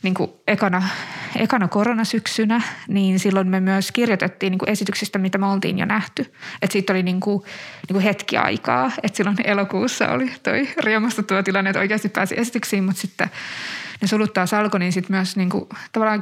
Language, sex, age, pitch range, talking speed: Finnish, female, 20-39, 190-210 Hz, 170 wpm